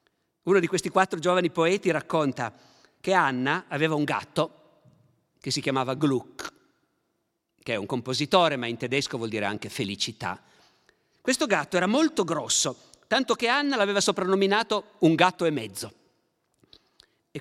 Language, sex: Italian, male